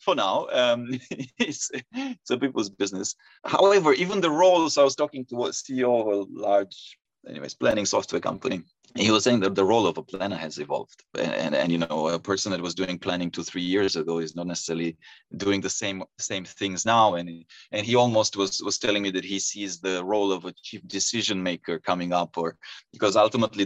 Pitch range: 95-130 Hz